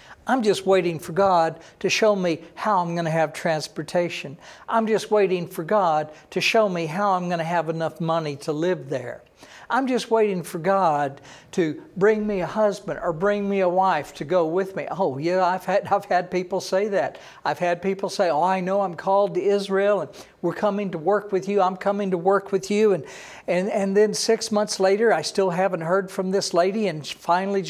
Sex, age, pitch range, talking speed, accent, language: male, 60-79, 165-205 Hz, 215 wpm, American, English